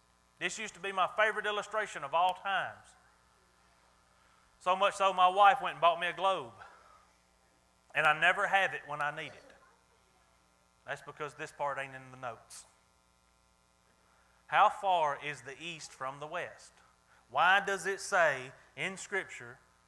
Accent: American